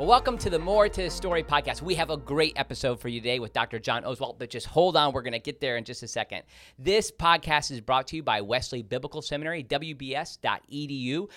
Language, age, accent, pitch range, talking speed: English, 40-59, American, 115-160 Hz, 240 wpm